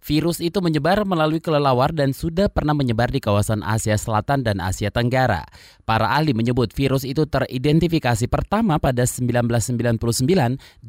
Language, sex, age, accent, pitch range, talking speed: Indonesian, male, 20-39, native, 125-165 Hz, 140 wpm